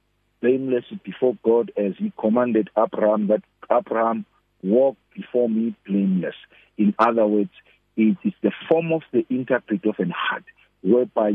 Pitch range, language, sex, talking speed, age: 110-145 Hz, English, male, 150 wpm, 50-69